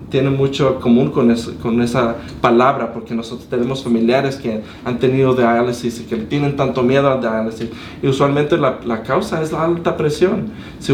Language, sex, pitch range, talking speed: Spanish, male, 115-135 Hz, 185 wpm